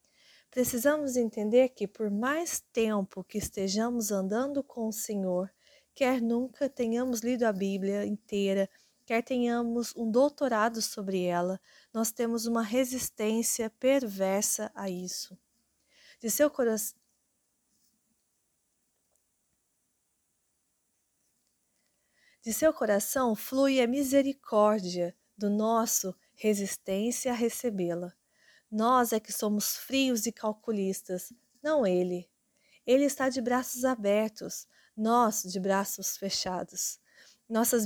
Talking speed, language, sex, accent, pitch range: 100 wpm, Portuguese, female, Brazilian, 205-250 Hz